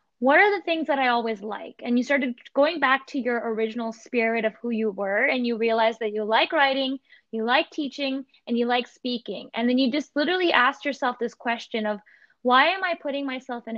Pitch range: 235-275 Hz